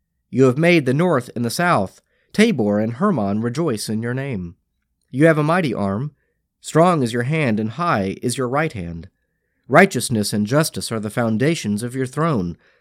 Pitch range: 100-165 Hz